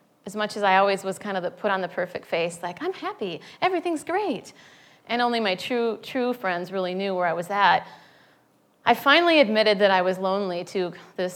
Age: 30-49